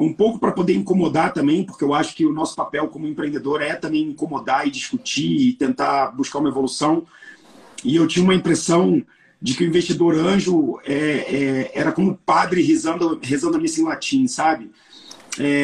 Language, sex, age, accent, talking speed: Portuguese, male, 40-59, Brazilian, 190 wpm